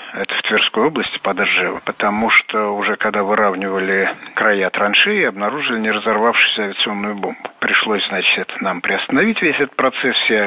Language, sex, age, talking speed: Russian, male, 50-69, 150 wpm